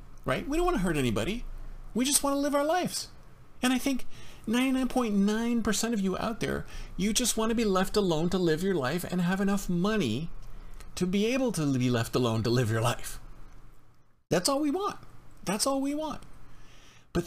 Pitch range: 155-220 Hz